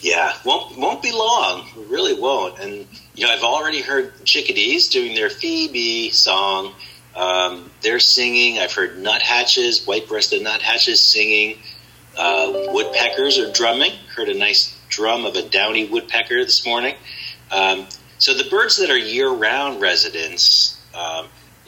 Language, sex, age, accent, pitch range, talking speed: English, male, 40-59, American, 270-400 Hz, 140 wpm